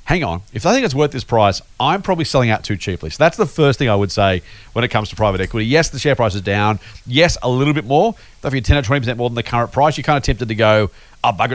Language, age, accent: English, 40-59, Australian